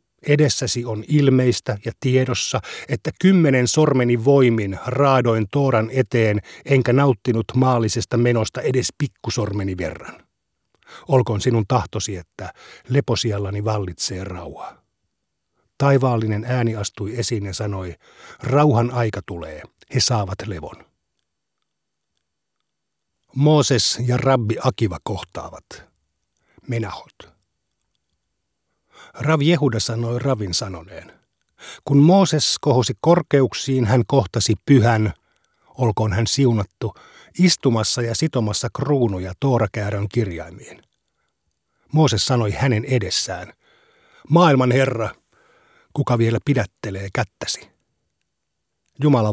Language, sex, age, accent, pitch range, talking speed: Finnish, male, 60-79, native, 105-135 Hz, 90 wpm